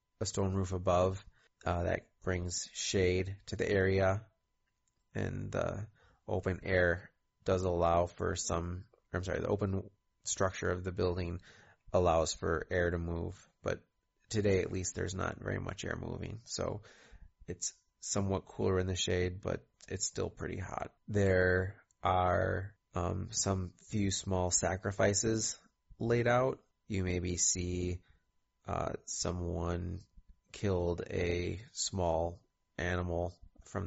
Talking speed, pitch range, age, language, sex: 130 wpm, 90-100 Hz, 30-49, English, male